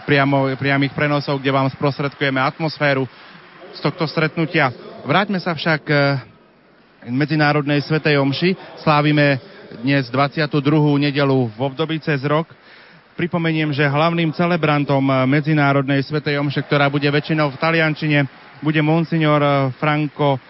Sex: male